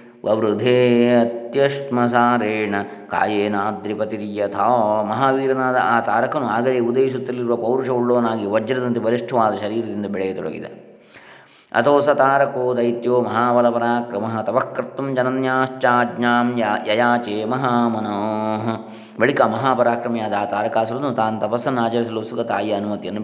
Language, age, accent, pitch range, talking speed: Kannada, 20-39, native, 110-125 Hz, 75 wpm